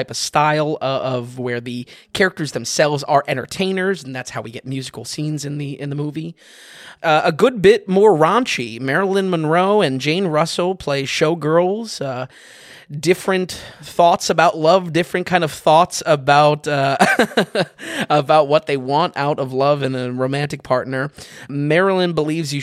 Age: 20-39